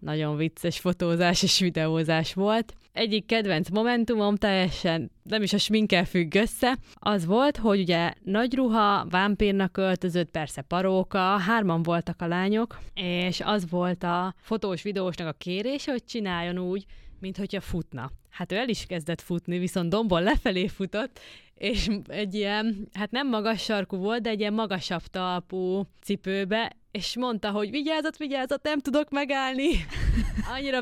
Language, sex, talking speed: Hungarian, female, 145 wpm